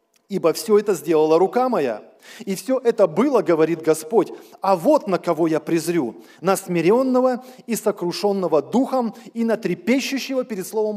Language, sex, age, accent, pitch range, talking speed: Russian, male, 20-39, native, 175-230 Hz, 155 wpm